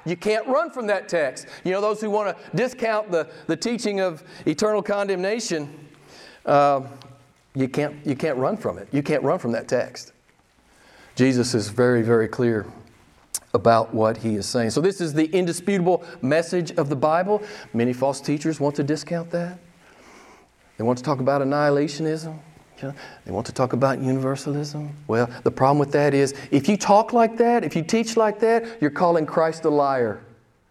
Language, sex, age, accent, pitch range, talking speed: English, male, 40-59, American, 145-240 Hz, 180 wpm